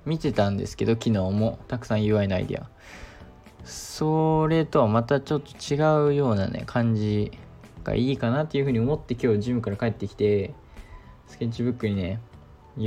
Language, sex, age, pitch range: Japanese, male, 20-39, 105-130 Hz